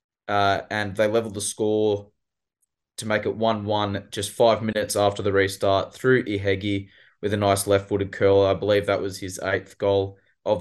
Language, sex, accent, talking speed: English, male, Australian, 175 wpm